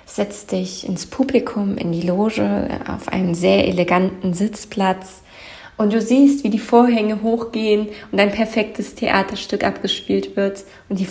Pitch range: 185-225 Hz